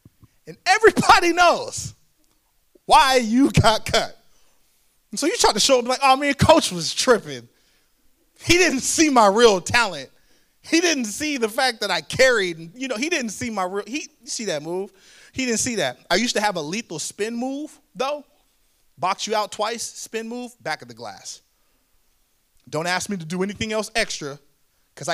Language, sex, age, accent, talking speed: English, male, 30-49, American, 190 wpm